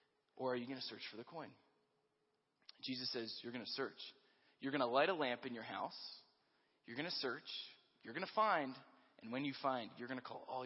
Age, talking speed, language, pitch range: 20-39, 230 wpm, English, 130-170 Hz